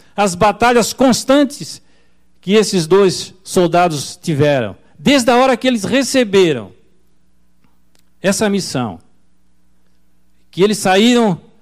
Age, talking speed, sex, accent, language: 60-79, 100 wpm, male, Brazilian, Portuguese